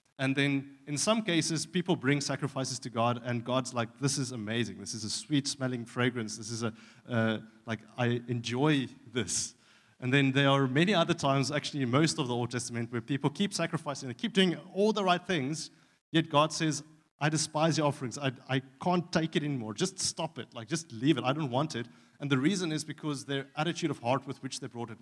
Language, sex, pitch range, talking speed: English, male, 115-140 Hz, 220 wpm